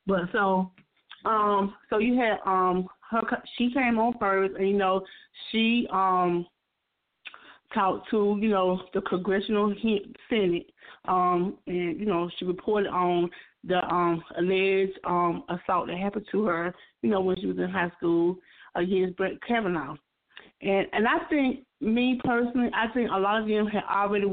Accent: American